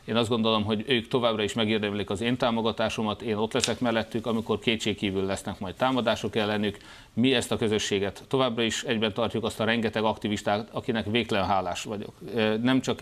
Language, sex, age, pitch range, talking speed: Hungarian, male, 30-49, 105-115 Hz, 180 wpm